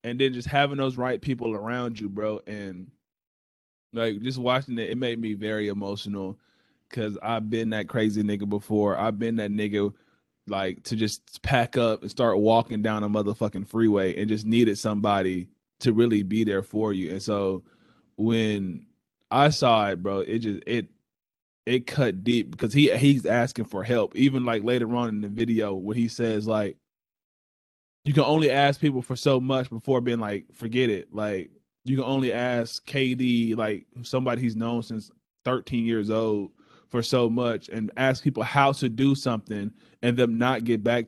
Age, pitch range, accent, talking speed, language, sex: 20-39, 105-125 Hz, American, 185 wpm, English, male